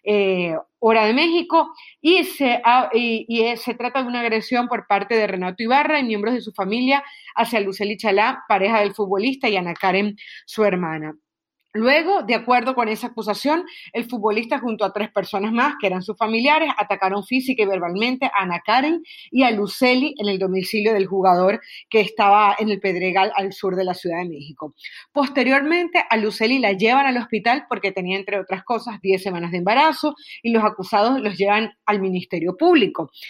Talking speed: 185 wpm